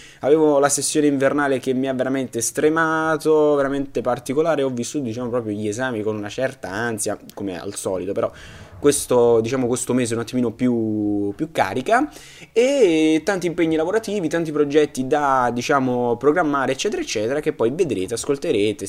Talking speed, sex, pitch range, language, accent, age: 160 wpm, male, 110-155 Hz, Italian, native, 20-39